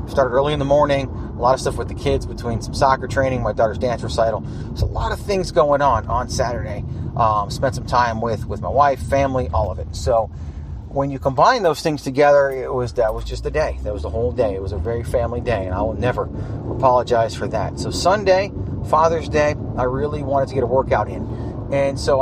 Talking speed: 235 wpm